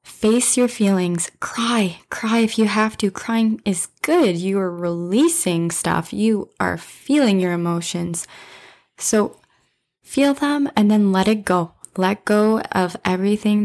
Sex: female